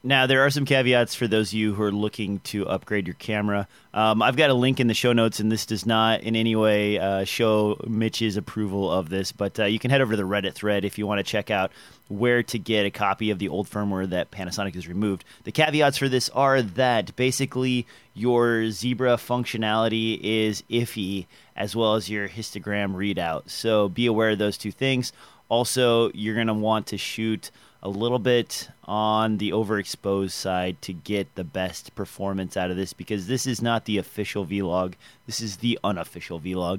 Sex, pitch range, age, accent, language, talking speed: male, 100-120 Hz, 30-49, American, English, 205 wpm